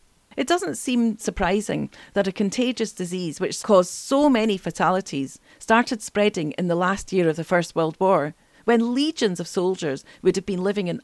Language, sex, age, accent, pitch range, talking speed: English, female, 40-59, British, 175-230 Hz, 180 wpm